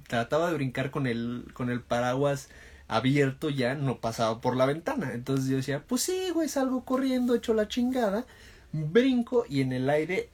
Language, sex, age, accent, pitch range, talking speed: Spanish, male, 30-49, Mexican, 115-175 Hz, 180 wpm